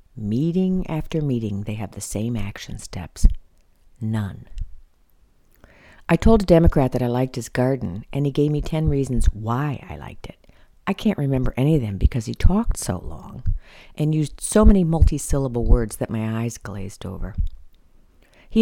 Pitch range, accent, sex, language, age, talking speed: 100-150 Hz, American, female, English, 50-69, 170 wpm